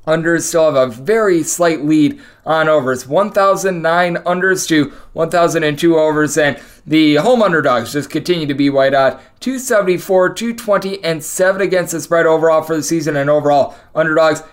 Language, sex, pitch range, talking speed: English, male, 155-190 Hz, 155 wpm